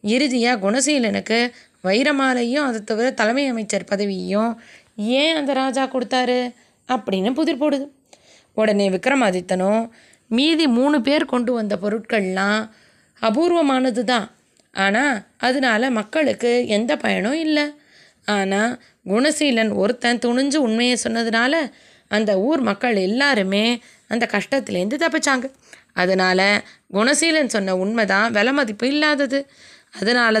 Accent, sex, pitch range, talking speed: native, female, 205-285 Hz, 105 wpm